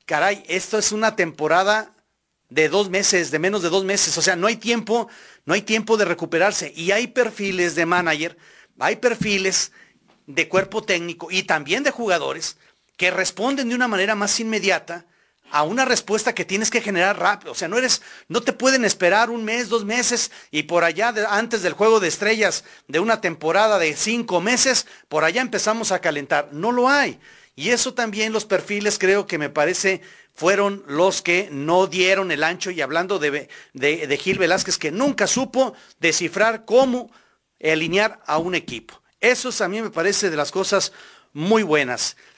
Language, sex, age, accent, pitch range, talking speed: Spanish, male, 40-59, Mexican, 175-225 Hz, 180 wpm